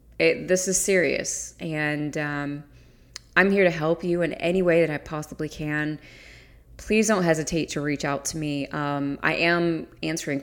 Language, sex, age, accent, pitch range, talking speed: English, female, 20-39, American, 140-170 Hz, 175 wpm